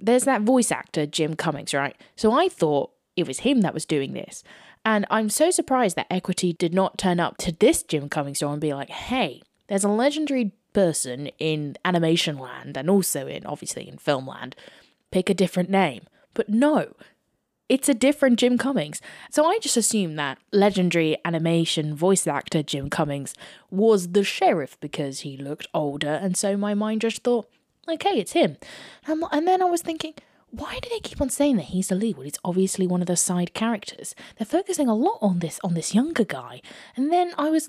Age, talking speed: 20-39, 200 wpm